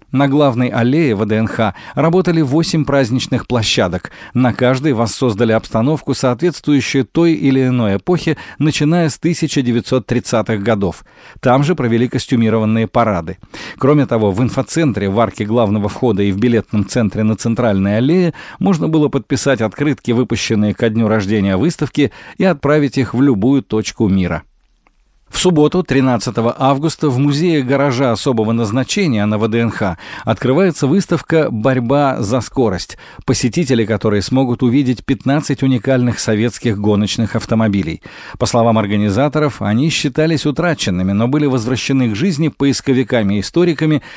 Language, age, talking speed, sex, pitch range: Russian, 50-69, 130 wpm, male, 110-145 Hz